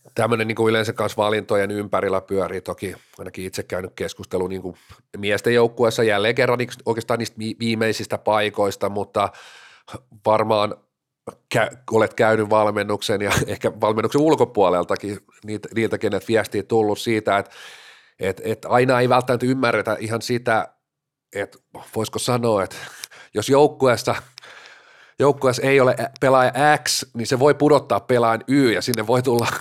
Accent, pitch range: native, 105-125 Hz